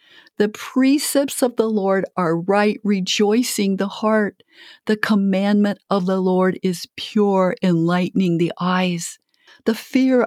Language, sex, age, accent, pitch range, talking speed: English, female, 50-69, American, 165-215 Hz, 130 wpm